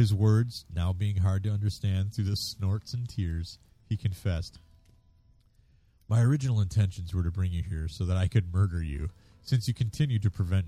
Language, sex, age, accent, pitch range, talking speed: English, male, 30-49, American, 90-115 Hz, 185 wpm